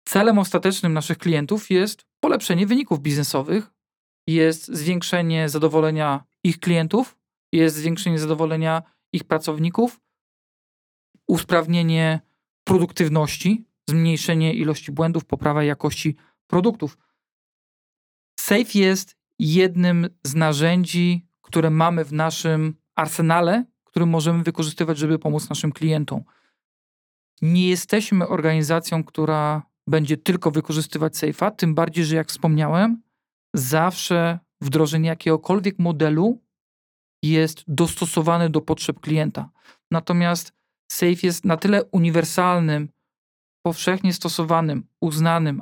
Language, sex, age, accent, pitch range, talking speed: Polish, male, 40-59, native, 155-180 Hz, 95 wpm